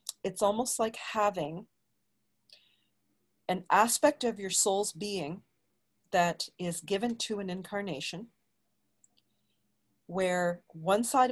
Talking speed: 100 wpm